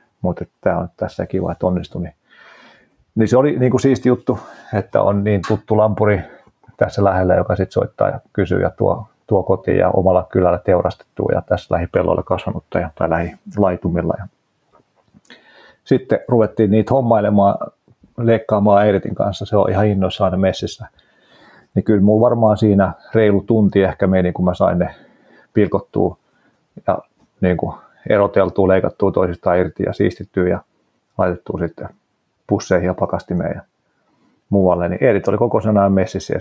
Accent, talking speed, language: native, 145 wpm, Finnish